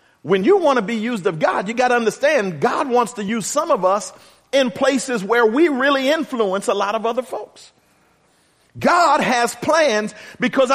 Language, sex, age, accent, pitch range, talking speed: English, male, 40-59, American, 235-305 Hz, 190 wpm